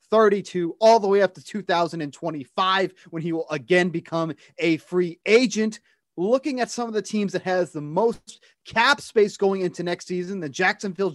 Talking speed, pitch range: 180 wpm, 160-200 Hz